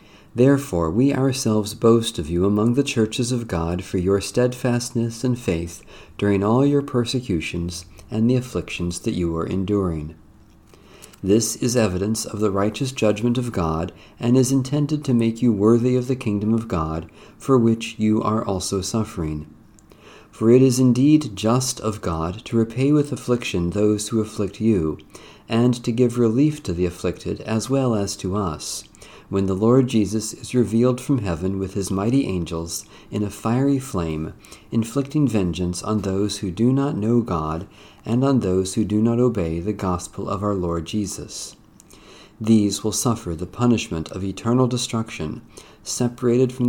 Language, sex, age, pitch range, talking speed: English, male, 40-59, 95-120 Hz, 165 wpm